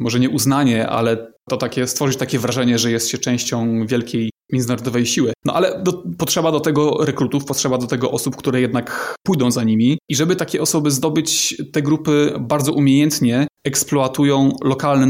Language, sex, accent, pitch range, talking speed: Polish, male, native, 125-145 Hz, 170 wpm